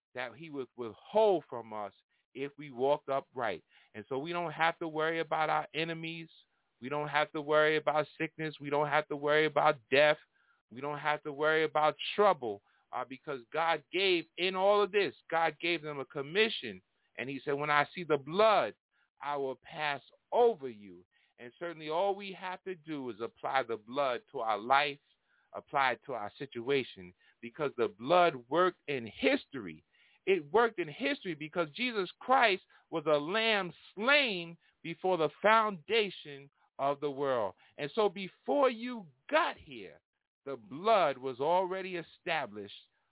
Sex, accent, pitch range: male, American, 125-175 Hz